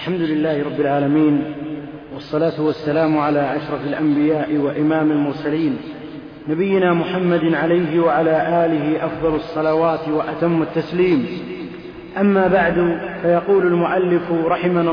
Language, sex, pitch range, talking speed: Arabic, male, 165-195 Hz, 100 wpm